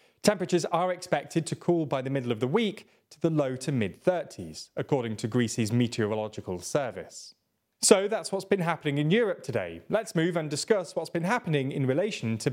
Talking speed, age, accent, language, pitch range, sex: 185 wpm, 30-49, British, English, 125-180 Hz, male